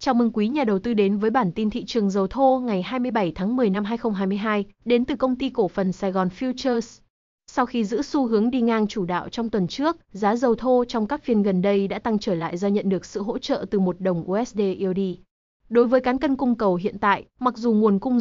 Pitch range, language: 195-245 Hz, Vietnamese